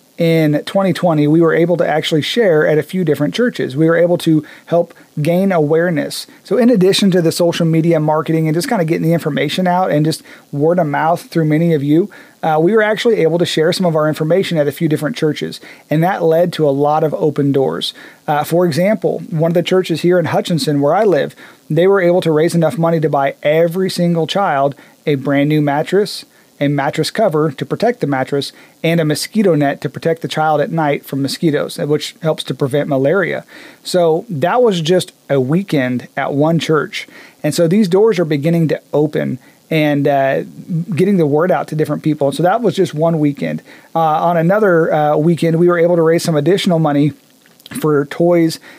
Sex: male